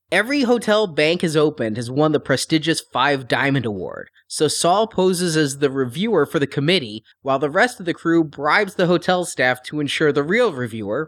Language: English